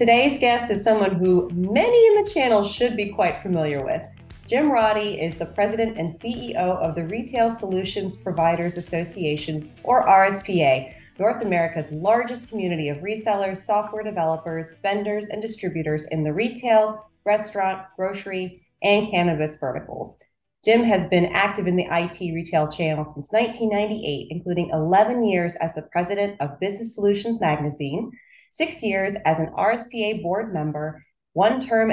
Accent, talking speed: American, 145 wpm